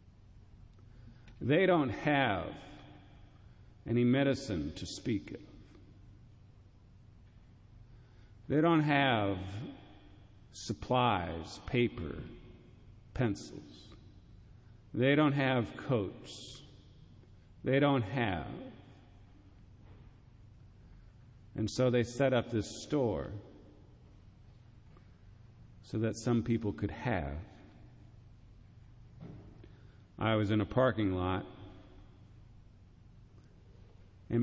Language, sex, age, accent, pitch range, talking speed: English, male, 50-69, American, 100-115 Hz, 70 wpm